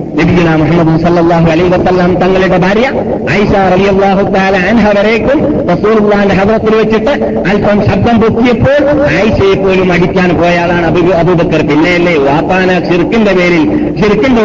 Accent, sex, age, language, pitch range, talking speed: native, male, 50-69, Malayalam, 175-220 Hz, 90 wpm